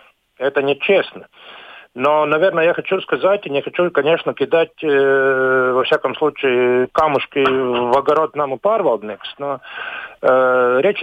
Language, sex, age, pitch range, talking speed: Russian, male, 50-69, 130-170 Hz, 130 wpm